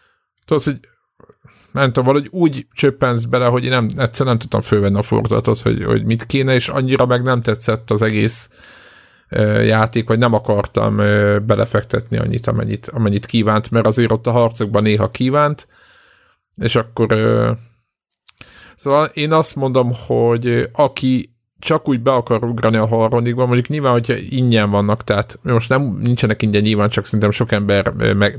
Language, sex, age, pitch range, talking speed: Hungarian, male, 50-69, 105-125 Hz, 165 wpm